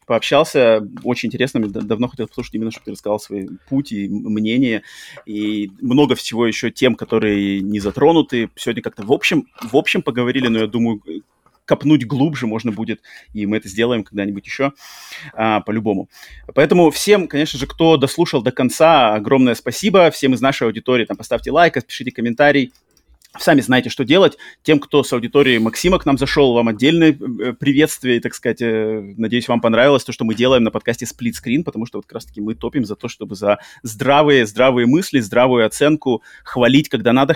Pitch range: 110-140 Hz